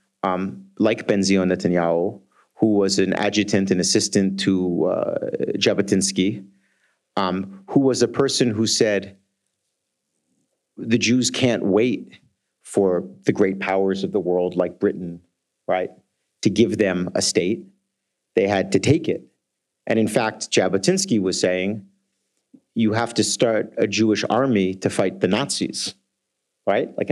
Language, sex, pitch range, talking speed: Italian, male, 95-115 Hz, 140 wpm